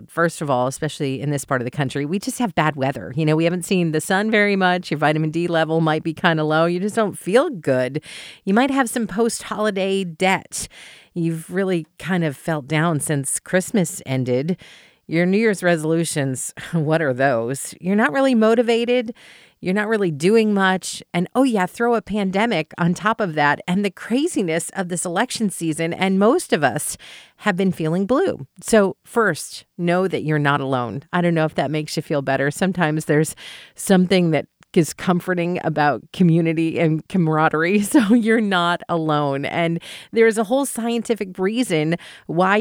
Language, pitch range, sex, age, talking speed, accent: English, 155-205 Hz, female, 40-59, 185 wpm, American